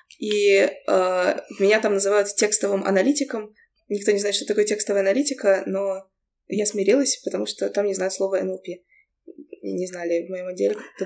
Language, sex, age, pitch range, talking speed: Russian, female, 20-39, 180-210 Hz, 165 wpm